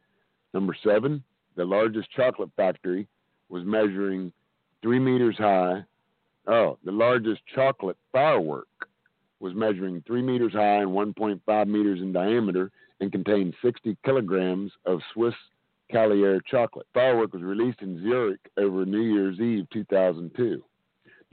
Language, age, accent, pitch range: English, 50-69, American, 90-110 Hz